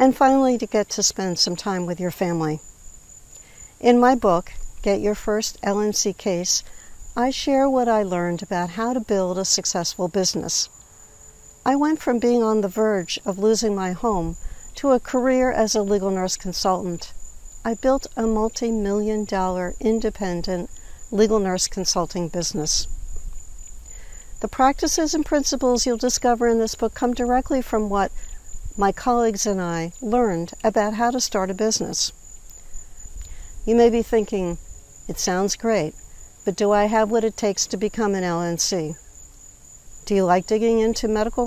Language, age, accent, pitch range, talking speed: English, 60-79, American, 180-240 Hz, 155 wpm